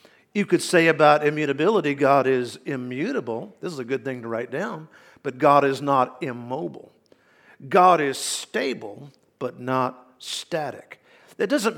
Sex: male